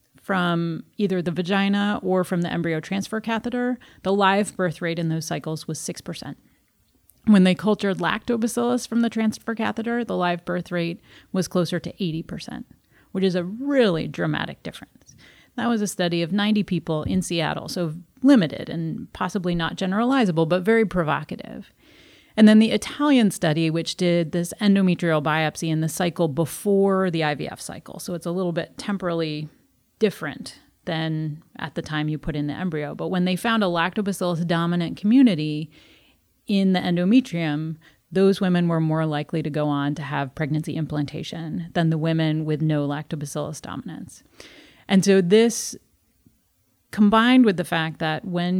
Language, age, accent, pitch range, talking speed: English, 30-49, American, 160-195 Hz, 160 wpm